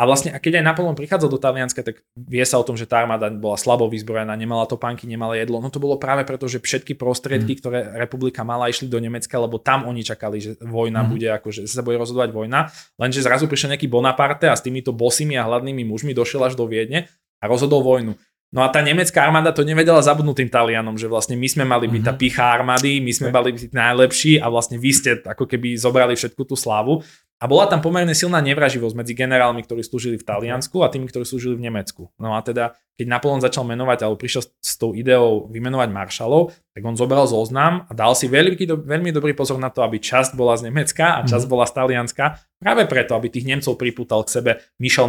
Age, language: 20-39, Slovak